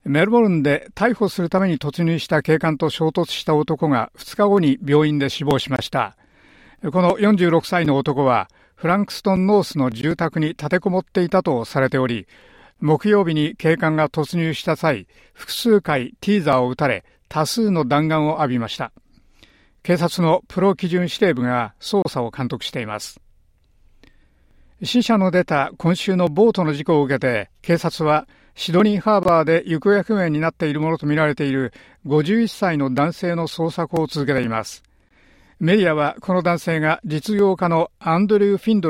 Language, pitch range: Japanese, 145-185 Hz